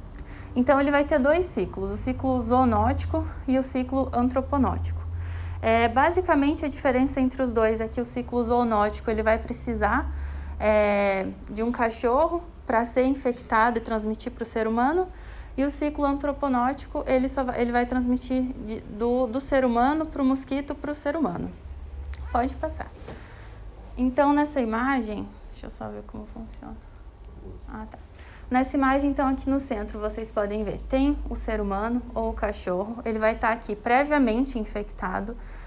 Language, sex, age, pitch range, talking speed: Portuguese, female, 20-39, 215-270 Hz, 165 wpm